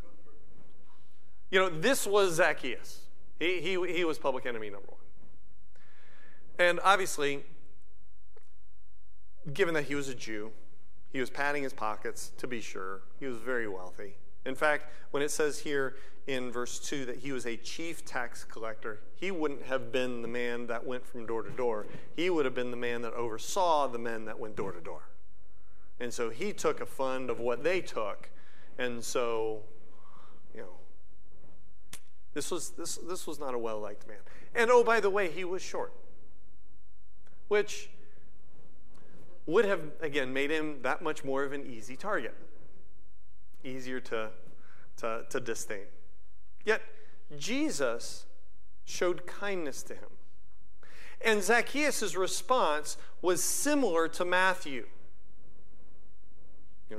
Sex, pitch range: male, 105-170 Hz